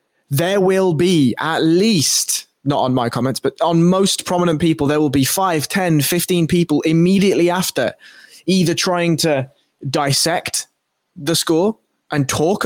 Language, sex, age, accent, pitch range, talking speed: English, male, 20-39, British, 140-175 Hz, 145 wpm